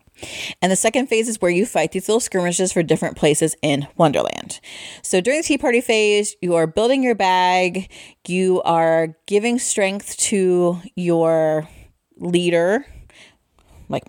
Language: English